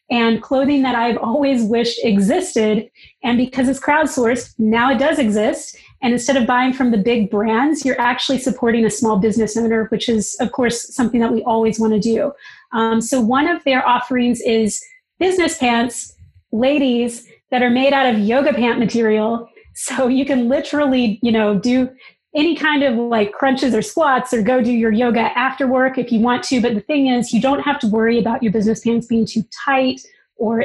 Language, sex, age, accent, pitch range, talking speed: English, female, 30-49, American, 225-260 Hz, 195 wpm